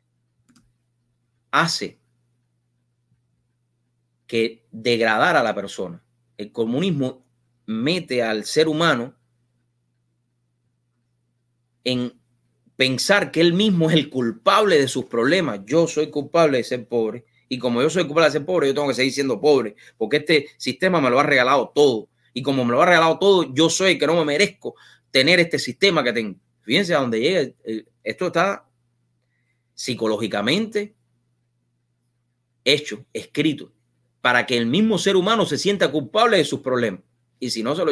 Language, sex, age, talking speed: English, male, 30-49, 150 wpm